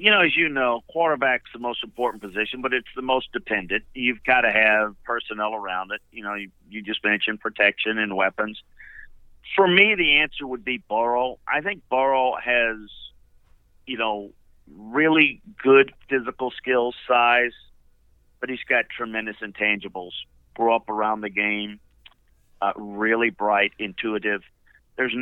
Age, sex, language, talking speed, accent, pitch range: 50-69, male, English, 150 wpm, American, 105-130 Hz